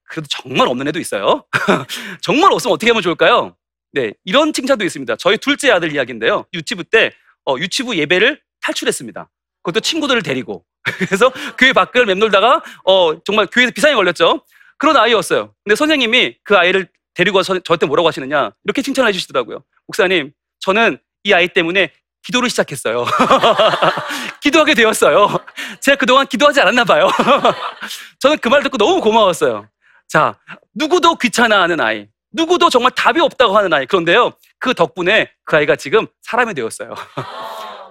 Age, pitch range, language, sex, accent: 30-49, 205-295 Hz, Korean, male, native